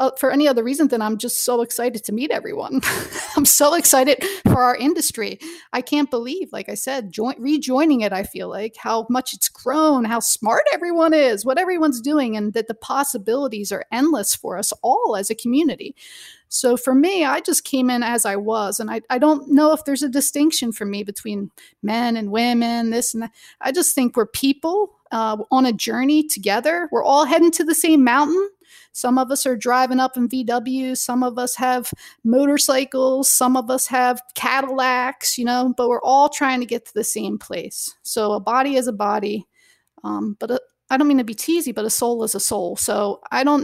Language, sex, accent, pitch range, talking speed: English, female, American, 230-290 Hz, 210 wpm